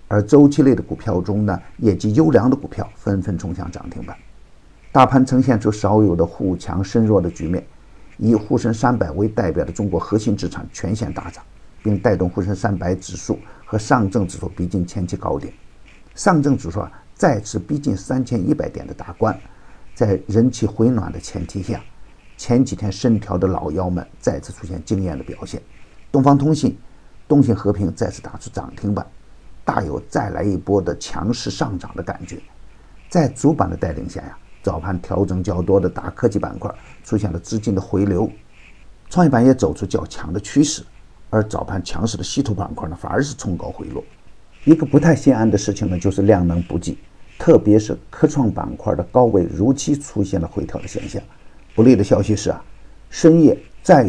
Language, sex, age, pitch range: Chinese, male, 50-69, 90-115 Hz